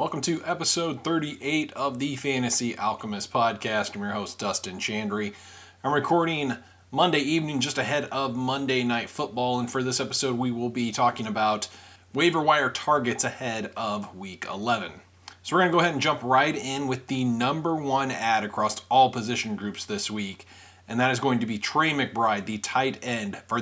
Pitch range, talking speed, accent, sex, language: 105-135 Hz, 185 wpm, American, male, English